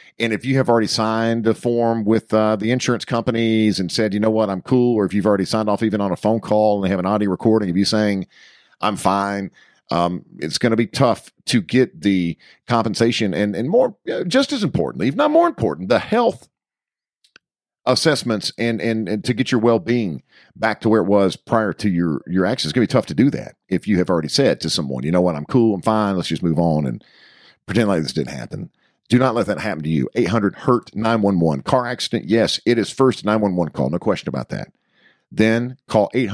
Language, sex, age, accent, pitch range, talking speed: English, male, 50-69, American, 95-120 Hz, 225 wpm